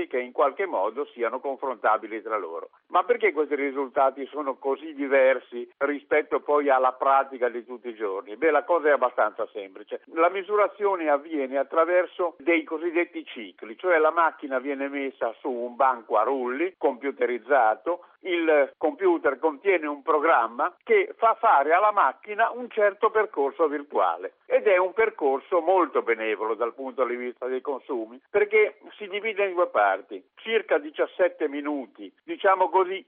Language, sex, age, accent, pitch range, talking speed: Italian, male, 50-69, native, 135-195 Hz, 150 wpm